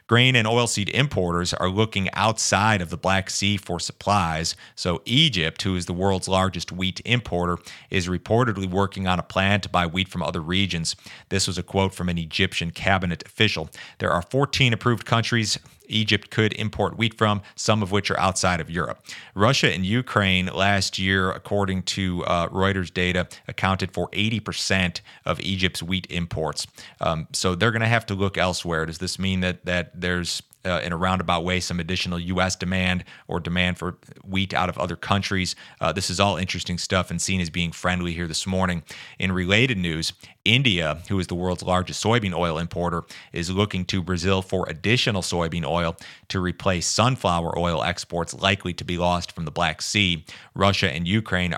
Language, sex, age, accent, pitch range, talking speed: English, male, 40-59, American, 90-100 Hz, 185 wpm